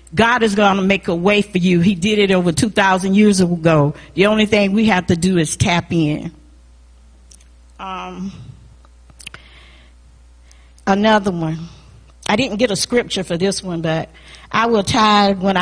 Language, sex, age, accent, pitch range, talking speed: English, female, 40-59, American, 155-210 Hz, 160 wpm